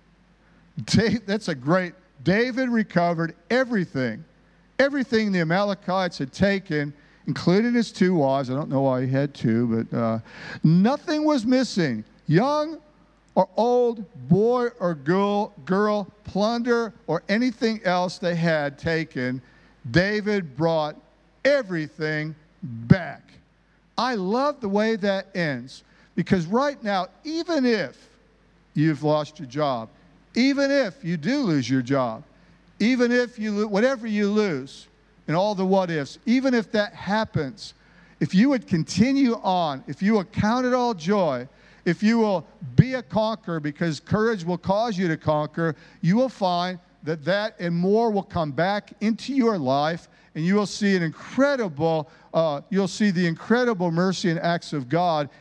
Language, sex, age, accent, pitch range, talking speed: English, male, 50-69, American, 155-220 Hz, 145 wpm